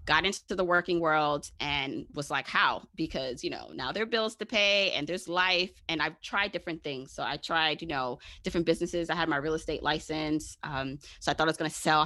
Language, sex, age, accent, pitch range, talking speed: English, female, 20-39, American, 150-185 Hz, 240 wpm